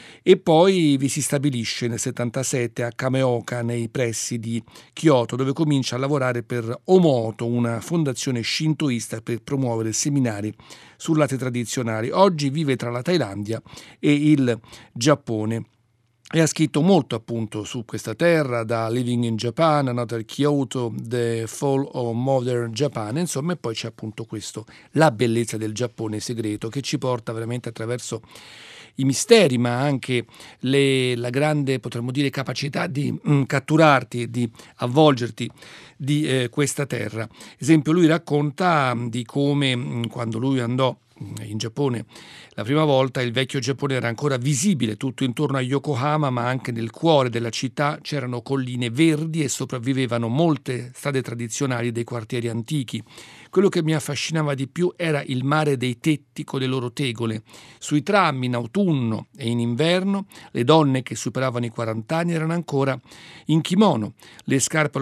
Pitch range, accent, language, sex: 120-150 Hz, native, Italian, male